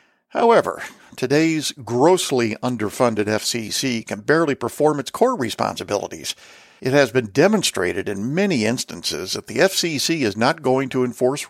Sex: male